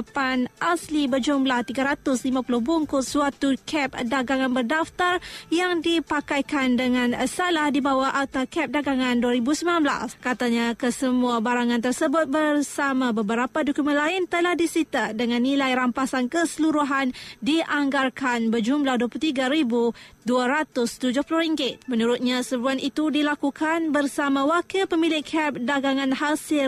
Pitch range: 245-295 Hz